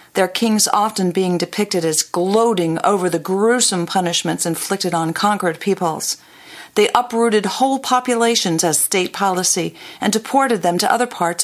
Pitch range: 175-230 Hz